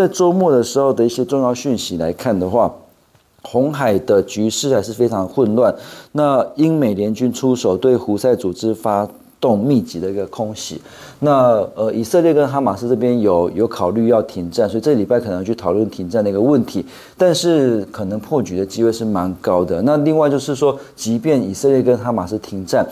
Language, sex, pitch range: Chinese, male, 100-130 Hz